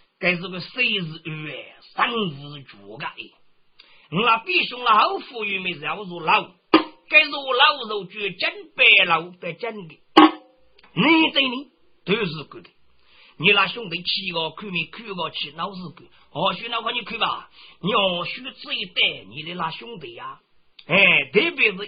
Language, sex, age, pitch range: Chinese, male, 50-69, 175-275 Hz